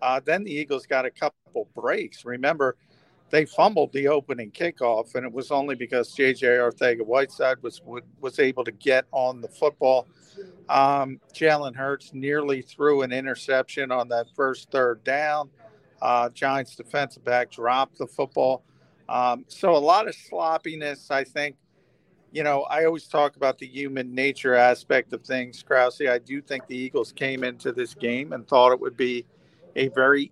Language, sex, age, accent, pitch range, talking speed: English, male, 50-69, American, 130-150 Hz, 170 wpm